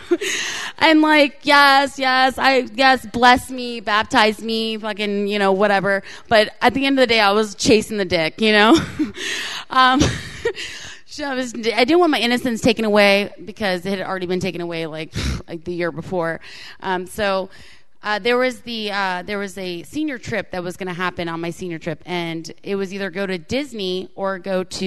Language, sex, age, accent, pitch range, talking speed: English, female, 30-49, American, 180-225 Hz, 200 wpm